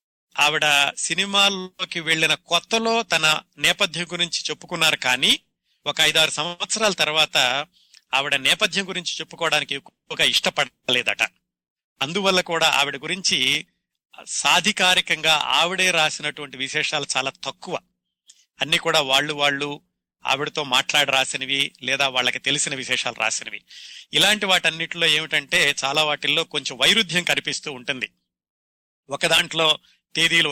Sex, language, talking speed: male, Telugu, 100 wpm